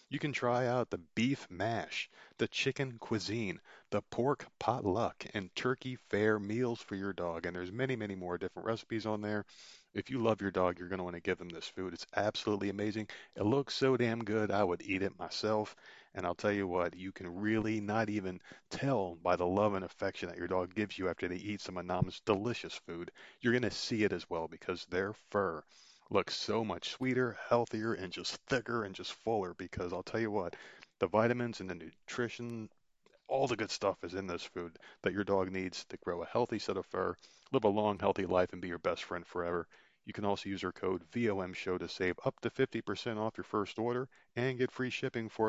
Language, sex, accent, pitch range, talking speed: English, male, American, 90-115 Hz, 220 wpm